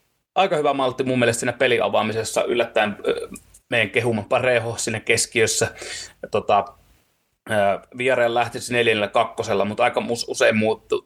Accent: native